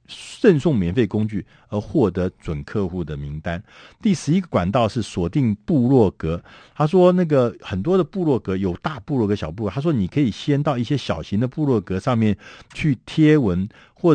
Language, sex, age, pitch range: Chinese, male, 60-79, 100-145 Hz